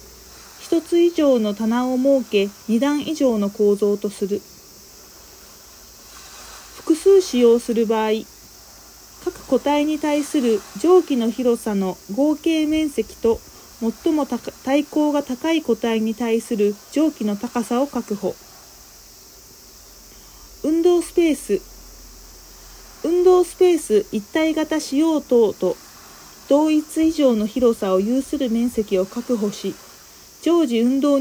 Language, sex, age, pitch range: Japanese, female, 40-59, 225-305 Hz